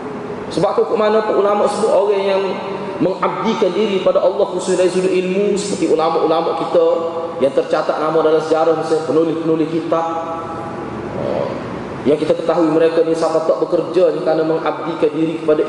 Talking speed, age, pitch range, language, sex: 150 wpm, 30-49, 160-225 Hz, Malay, male